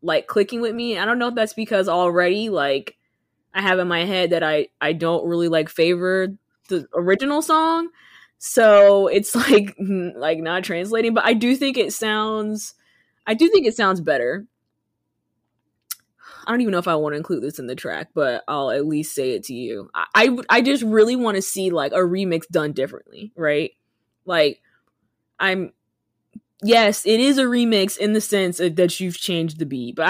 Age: 20-39